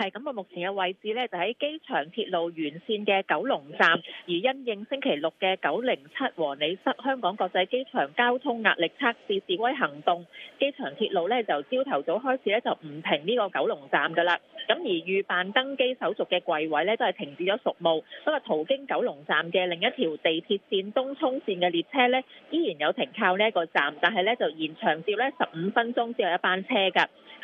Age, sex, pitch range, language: 30-49, female, 170-250 Hz, English